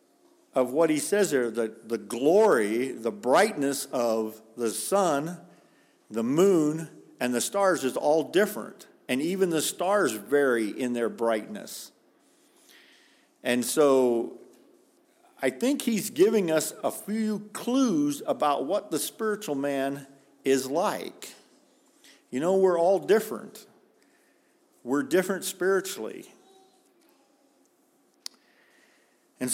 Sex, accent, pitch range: male, American, 120-190 Hz